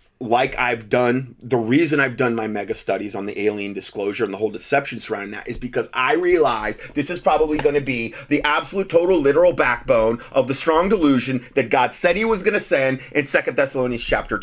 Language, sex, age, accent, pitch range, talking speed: English, male, 30-49, American, 125-180 Hz, 210 wpm